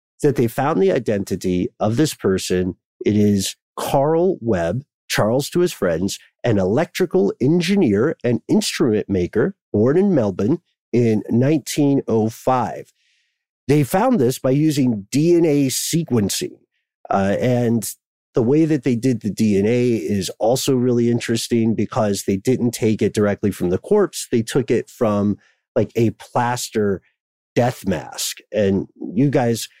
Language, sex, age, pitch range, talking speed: English, male, 50-69, 100-135 Hz, 135 wpm